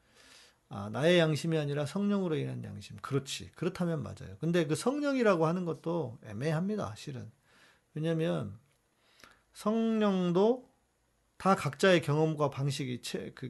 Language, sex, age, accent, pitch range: Korean, male, 40-59, native, 125-175 Hz